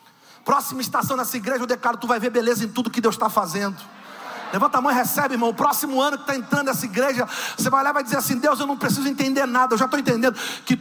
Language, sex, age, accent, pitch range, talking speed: Portuguese, male, 40-59, Brazilian, 210-280 Hz, 265 wpm